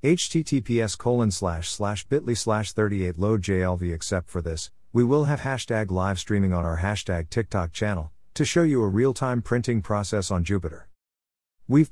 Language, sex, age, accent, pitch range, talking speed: English, male, 50-69, American, 85-120 Hz, 165 wpm